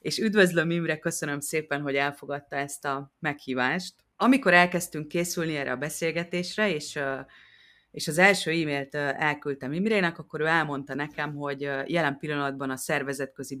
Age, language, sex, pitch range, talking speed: 30-49, Hungarian, female, 140-165 Hz, 140 wpm